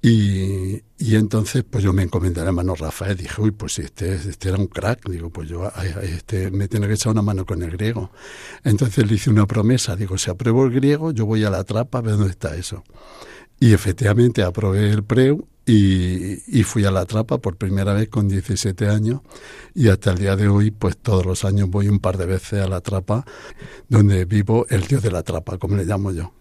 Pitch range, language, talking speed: 95-115 Hz, Spanish, 230 wpm